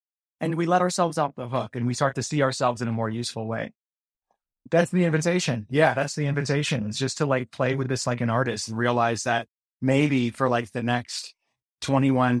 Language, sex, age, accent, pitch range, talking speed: English, male, 30-49, American, 120-155 Hz, 215 wpm